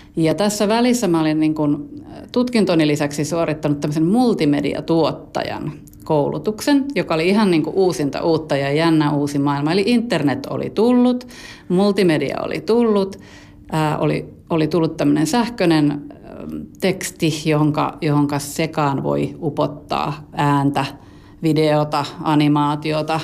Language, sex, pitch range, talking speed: Finnish, female, 150-185 Hz, 115 wpm